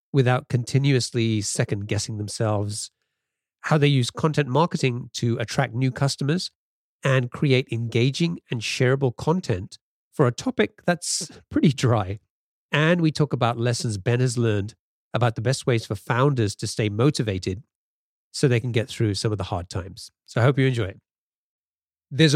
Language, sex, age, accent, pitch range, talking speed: English, male, 40-59, British, 115-155 Hz, 160 wpm